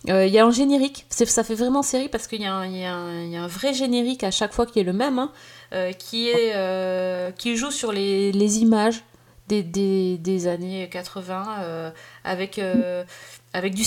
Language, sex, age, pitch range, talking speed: French, female, 30-49, 185-225 Hz, 175 wpm